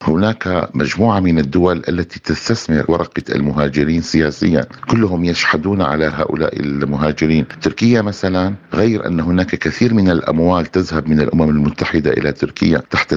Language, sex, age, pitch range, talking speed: Arabic, male, 50-69, 80-95 Hz, 130 wpm